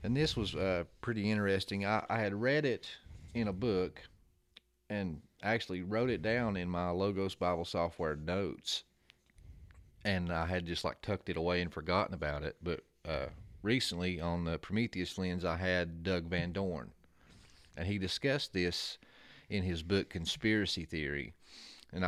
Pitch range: 85-100 Hz